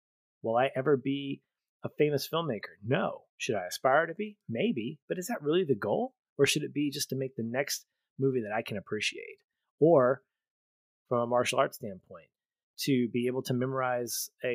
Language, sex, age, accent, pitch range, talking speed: English, male, 30-49, American, 110-135 Hz, 190 wpm